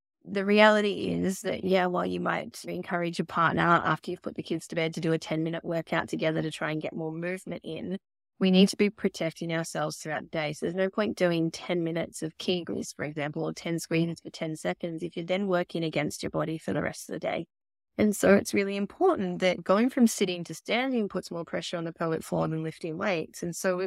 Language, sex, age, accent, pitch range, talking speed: English, female, 20-39, Australian, 160-195 Hz, 235 wpm